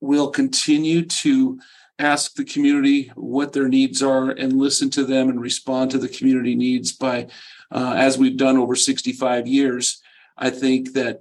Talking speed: 165 wpm